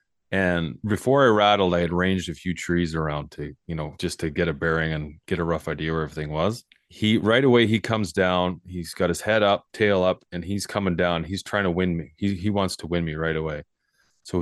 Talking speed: 240 wpm